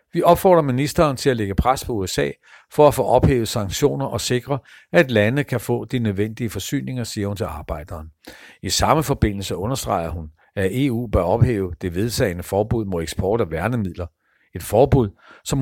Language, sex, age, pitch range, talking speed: Danish, male, 60-79, 100-135 Hz, 175 wpm